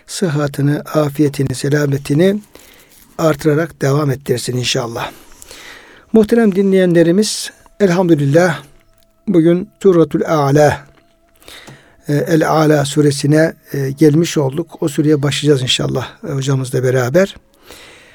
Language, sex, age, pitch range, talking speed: Turkish, male, 60-79, 145-185 Hz, 80 wpm